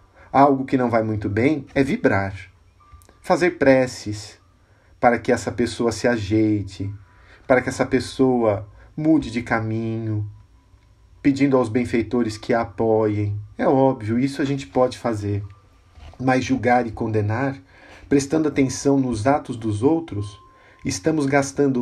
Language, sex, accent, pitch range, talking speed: Portuguese, male, Brazilian, 100-135 Hz, 130 wpm